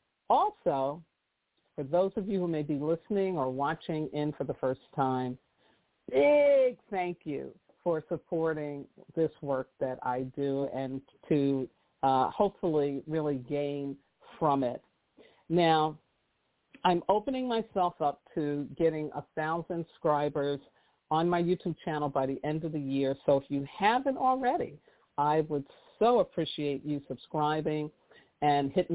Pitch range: 140-175 Hz